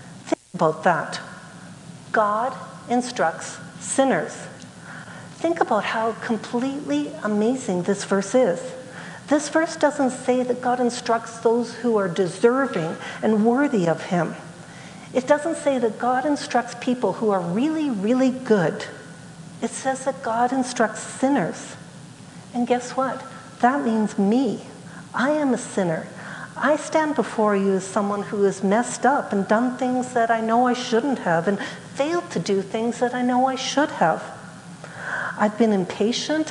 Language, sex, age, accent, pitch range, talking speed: English, female, 60-79, American, 195-255 Hz, 145 wpm